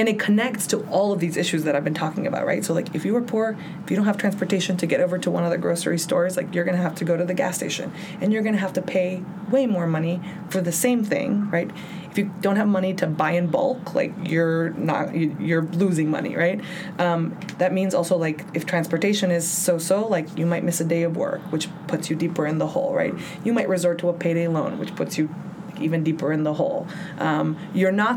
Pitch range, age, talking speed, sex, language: 170-195 Hz, 20-39, 255 wpm, female, English